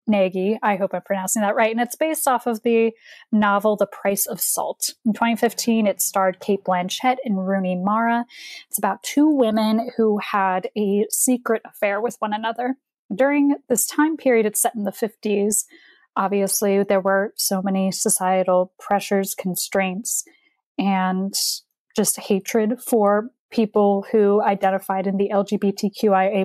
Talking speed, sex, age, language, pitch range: 150 wpm, female, 10-29, English, 195-235 Hz